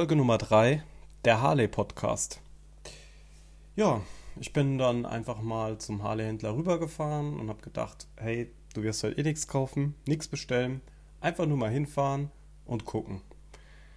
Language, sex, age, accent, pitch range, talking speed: German, male, 30-49, German, 105-145 Hz, 140 wpm